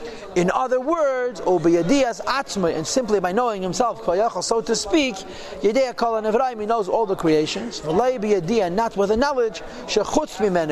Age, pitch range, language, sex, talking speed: 40-59, 210-270 Hz, English, male, 130 wpm